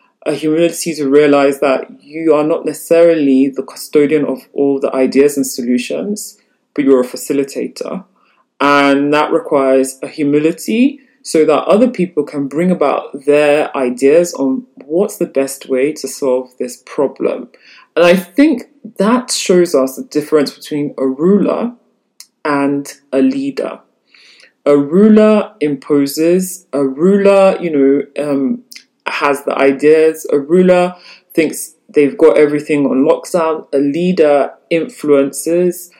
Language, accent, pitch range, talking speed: English, British, 140-185 Hz, 135 wpm